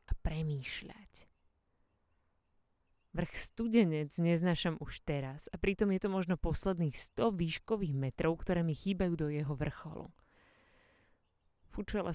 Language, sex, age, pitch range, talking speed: Slovak, female, 30-49, 140-185 Hz, 115 wpm